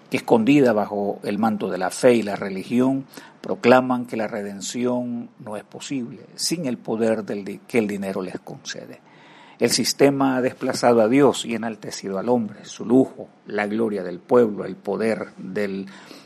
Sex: male